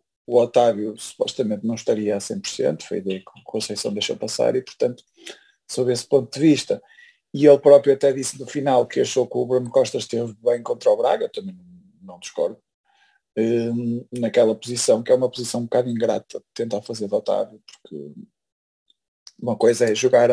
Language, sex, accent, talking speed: Portuguese, male, Portuguese, 175 wpm